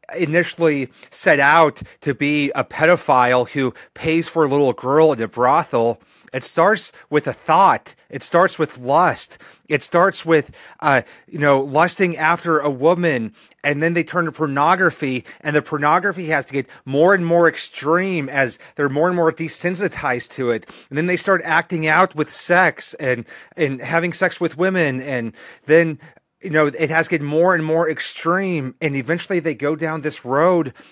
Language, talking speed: English, 180 wpm